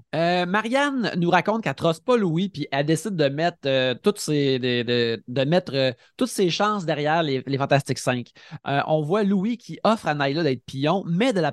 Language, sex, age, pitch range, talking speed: French, male, 20-39, 135-185 Hz, 220 wpm